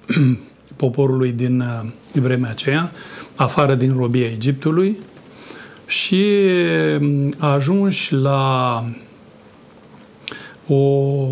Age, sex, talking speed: 40-59, male, 65 wpm